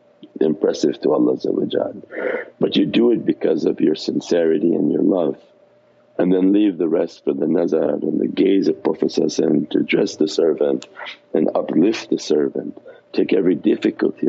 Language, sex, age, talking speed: English, male, 50-69, 160 wpm